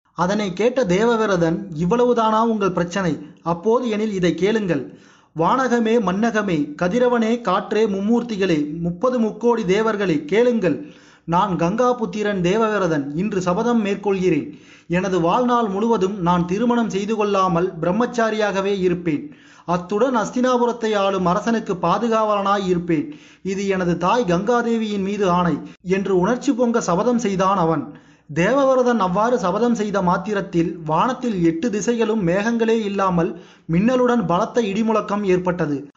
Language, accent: Tamil, native